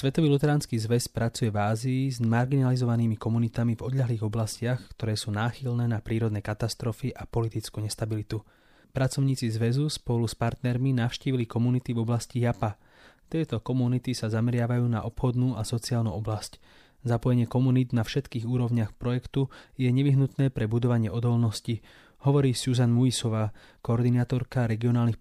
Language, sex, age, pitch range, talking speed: English, male, 20-39, 115-125 Hz, 135 wpm